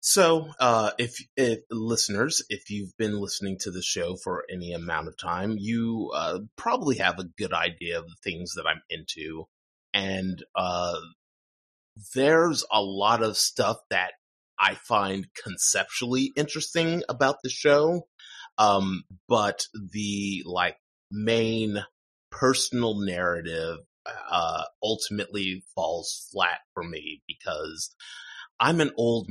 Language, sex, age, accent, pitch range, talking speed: English, male, 30-49, American, 90-115 Hz, 125 wpm